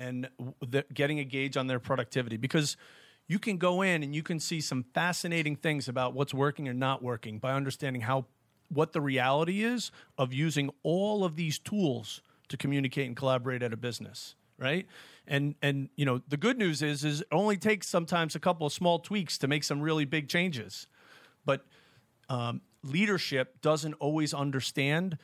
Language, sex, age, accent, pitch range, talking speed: English, male, 40-59, American, 130-160 Hz, 180 wpm